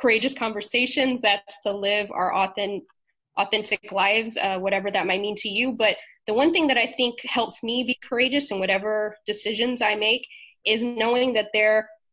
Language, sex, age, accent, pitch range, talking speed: English, female, 20-39, American, 205-245 Hz, 175 wpm